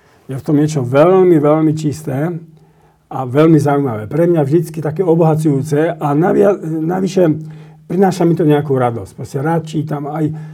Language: Slovak